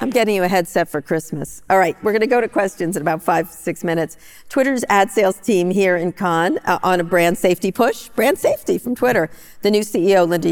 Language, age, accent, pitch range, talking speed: English, 50-69, American, 155-185 Hz, 235 wpm